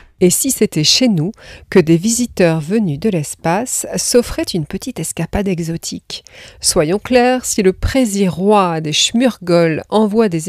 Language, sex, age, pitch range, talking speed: French, female, 40-59, 170-220 Hz, 150 wpm